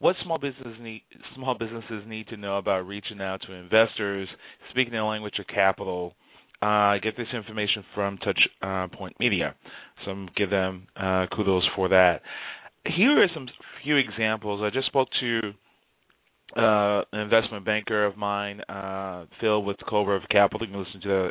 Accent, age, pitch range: American, 30-49, 95-115 Hz